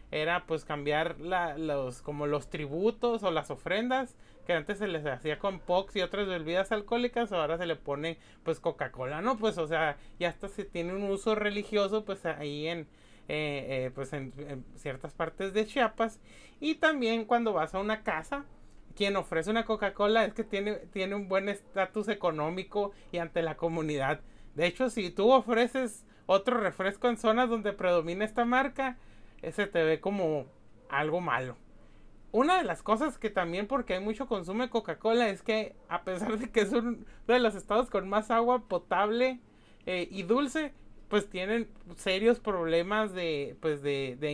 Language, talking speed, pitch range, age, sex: Spanish, 175 wpm, 155-220 Hz, 30-49, male